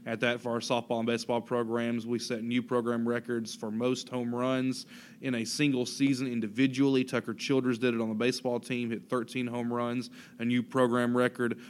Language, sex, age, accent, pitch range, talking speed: English, male, 20-39, American, 115-125 Hz, 195 wpm